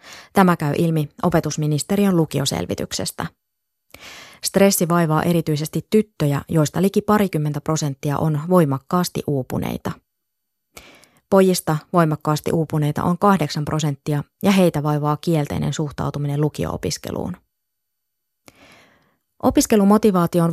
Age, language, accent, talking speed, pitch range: 20-39, Finnish, native, 85 wpm, 150-190 Hz